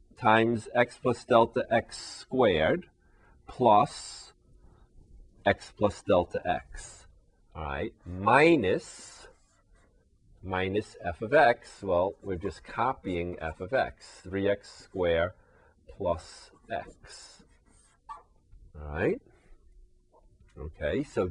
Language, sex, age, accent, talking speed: English, male, 40-59, American, 85 wpm